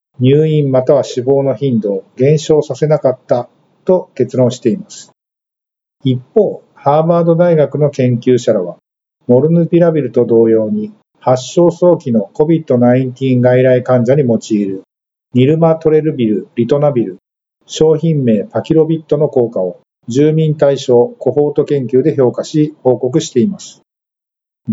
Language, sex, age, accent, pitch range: Japanese, male, 50-69, native, 125-155 Hz